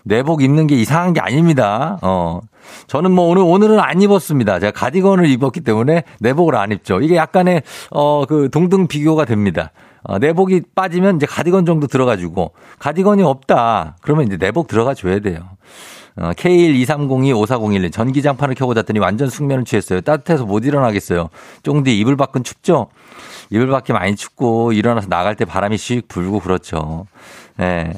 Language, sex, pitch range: Korean, male, 105-150 Hz